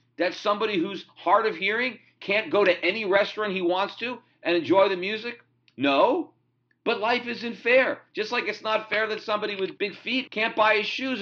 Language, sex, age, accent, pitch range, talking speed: English, male, 50-69, American, 175-250 Hz, 200 wpm